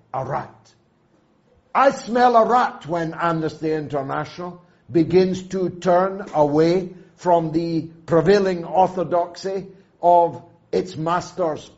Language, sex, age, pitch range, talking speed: English, male, 60-79, 165-225 Hz, 100 wpm